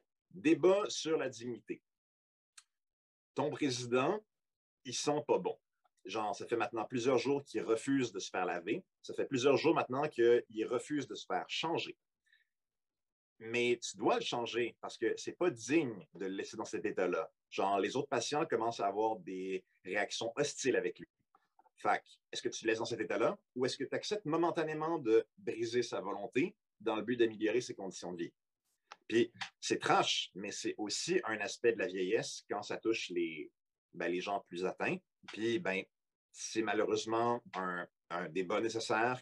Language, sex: French, male